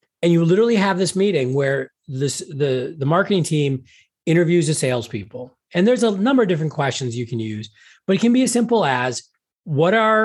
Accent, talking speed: American, 200 wpm